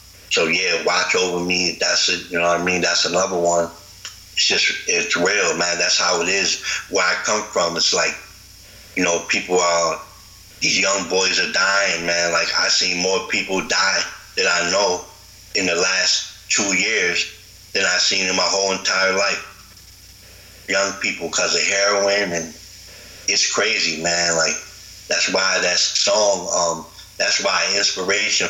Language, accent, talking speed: English, American, 170 wpm